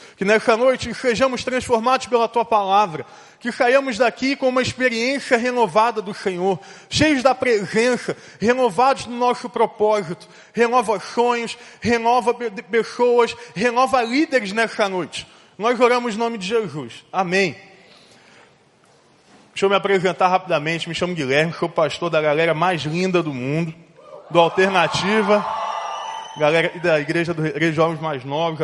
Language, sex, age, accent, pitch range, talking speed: Portuguese, male, 20-39, Brazilian, 170-230 Hz, 140 wpm